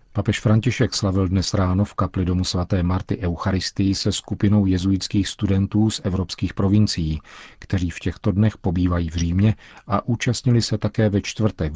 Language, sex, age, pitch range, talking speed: Czech, male, 40-59, 85-105 Hz, 160 wpm